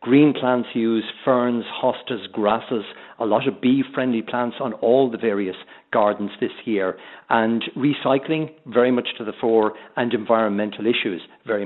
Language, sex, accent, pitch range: English, male, Irish, 105-125 Hz